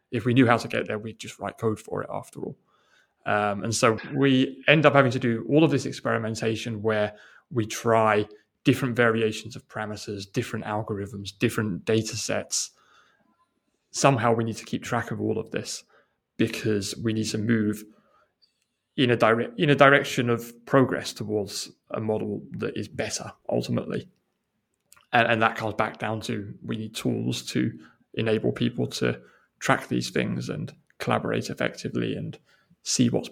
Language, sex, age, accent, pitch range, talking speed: English, male, 20-39, British, 110-125 Hz, 170 wpm